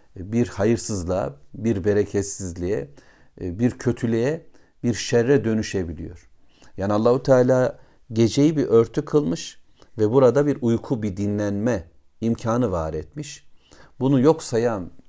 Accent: native